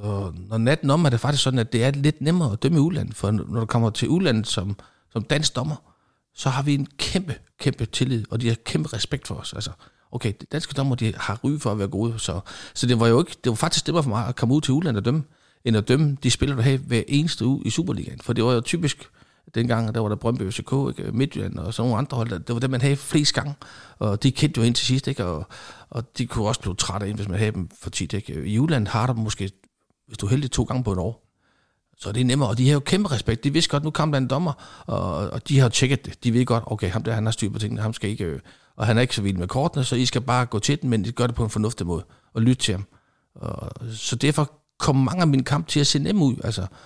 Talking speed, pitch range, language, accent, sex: 285 wpm, 110-135 Hz, Danish, native, male